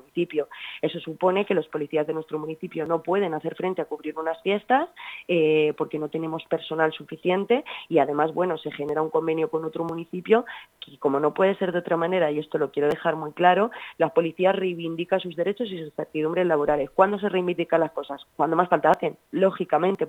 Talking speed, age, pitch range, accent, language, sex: 200 wpm, 30-49, 155-180 Hz, Spanish, Spanish, female